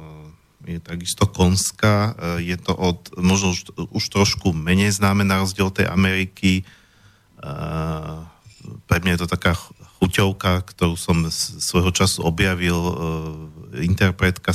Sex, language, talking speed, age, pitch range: male, Slovak, 110 wpm, 40-59, 85-95 Hz